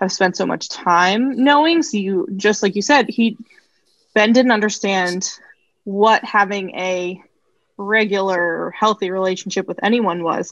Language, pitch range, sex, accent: English, 185-225 Hz, female, American